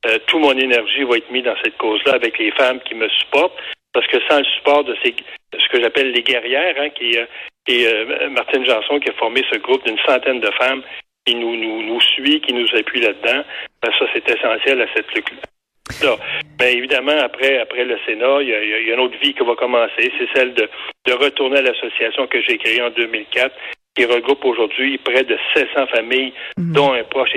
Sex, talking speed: male, 220 wpm